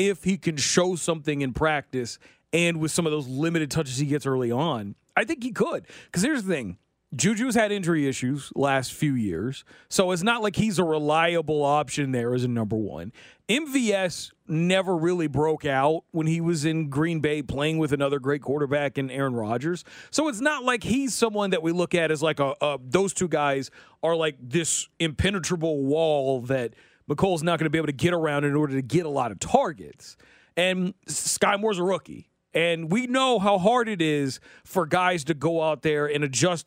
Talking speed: 205 wpm